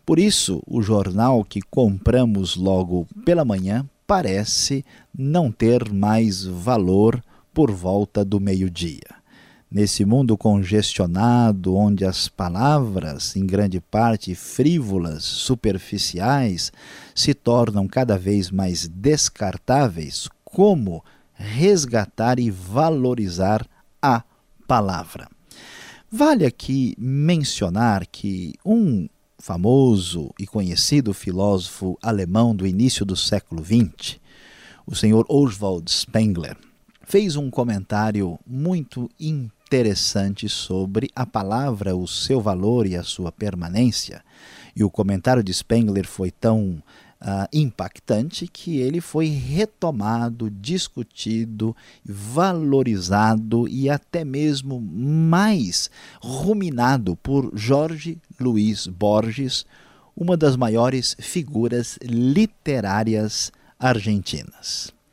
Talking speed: 95 wpm